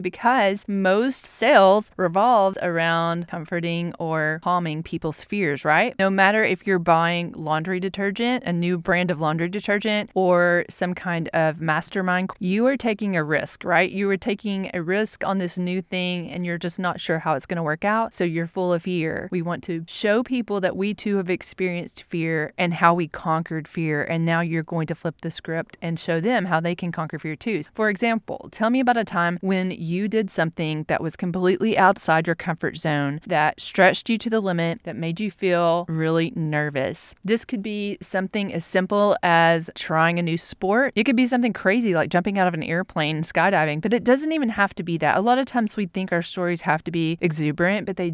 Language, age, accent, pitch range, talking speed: English, 20-39, American, 165-195 Hz, 210 wpm